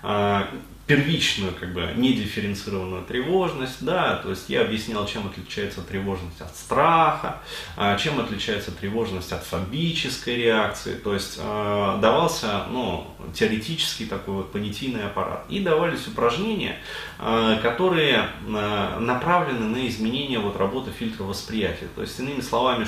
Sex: male